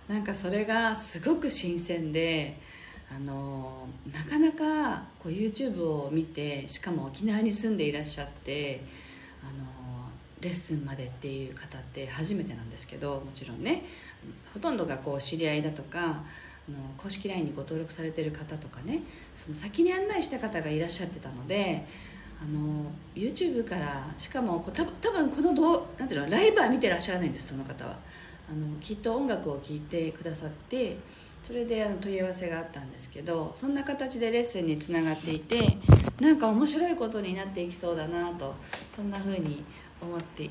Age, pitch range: 40-59, 150-230 Hz